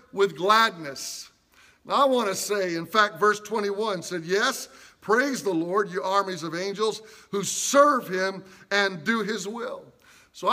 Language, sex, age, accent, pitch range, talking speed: English, male, 50-69, American, 195-250 Hz, 160 wpm